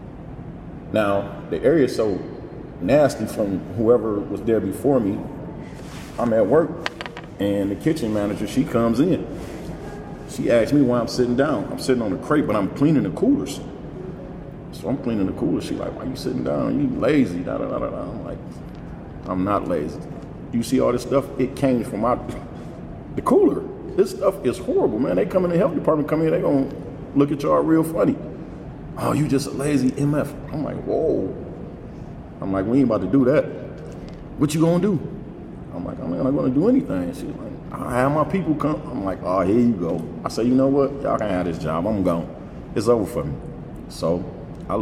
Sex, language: male, English